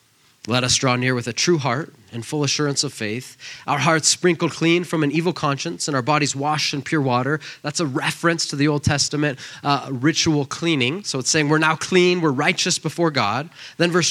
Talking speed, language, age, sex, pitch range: 215 wpm, English, 20-39, male, 130-160 Hz